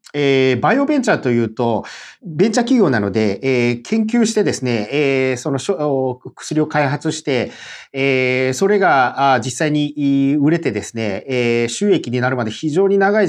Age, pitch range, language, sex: 40-59, 125-175 Hz, Japanese, male